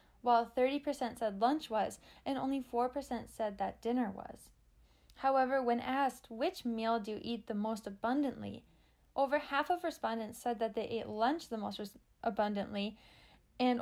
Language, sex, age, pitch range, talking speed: English, female, 10-29, 210-255 Hz, 155 wpm